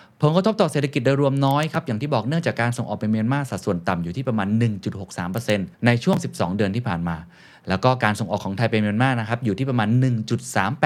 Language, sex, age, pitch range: Thai, male, 20-39, 105-145 Hz